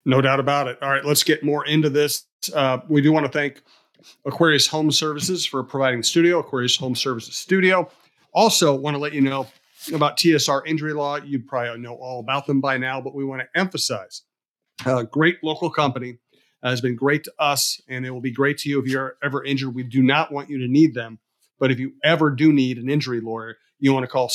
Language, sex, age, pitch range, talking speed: English, male, 40-59, 130-150 Hz, 230 wpm